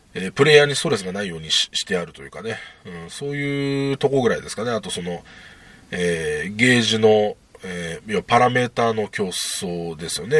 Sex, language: male, Japanese